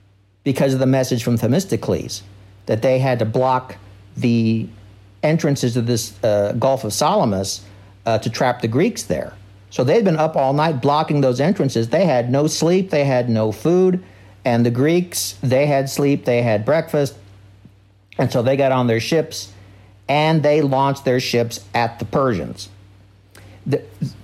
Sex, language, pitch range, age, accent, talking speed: male, English, 100-135 Hz, 60-79, American, 165 wpm